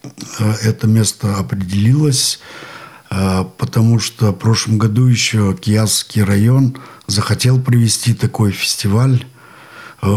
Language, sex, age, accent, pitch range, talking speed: Russian, male, 50-69, native, 100-120 Hz, 90 wpm